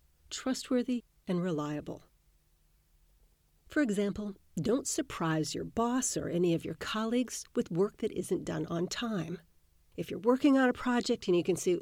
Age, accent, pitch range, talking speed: 50-69, American, 160-220 Hz, 155 wpm